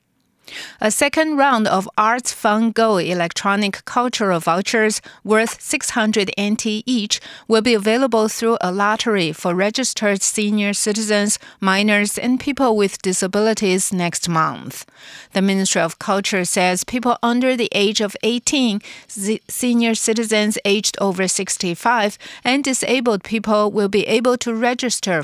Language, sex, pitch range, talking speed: English, female, 185-225 Hz, 130 wpm